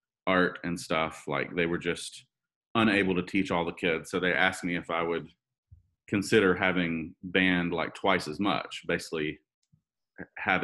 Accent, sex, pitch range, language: American, male, 85-100 Hz, English